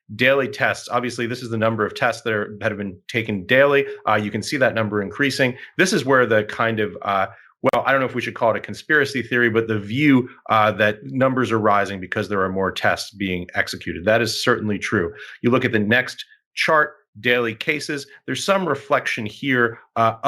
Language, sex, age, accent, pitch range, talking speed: English, male, 30-49, American, 105-135 Hz, 215 wpm